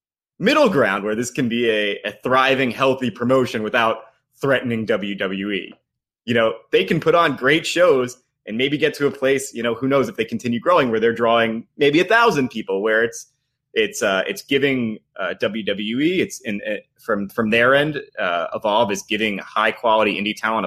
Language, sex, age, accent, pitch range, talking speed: English, male, 20-39, American, 95-130 Hz, 190 wpm